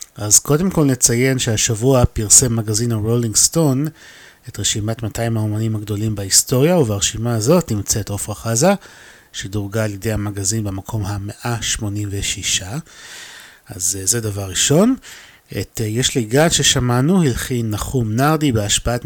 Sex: male